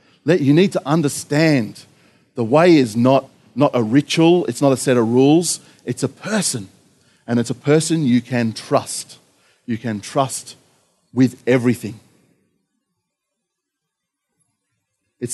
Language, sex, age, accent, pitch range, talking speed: English, male, 40-59, Australian, 125-165 Hz, 130 wpm